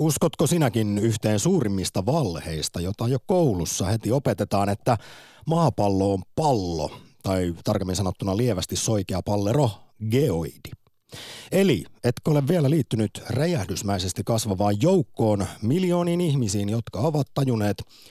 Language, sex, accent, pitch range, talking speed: Finnish, male, native, 95-140 Hz, 115 wpm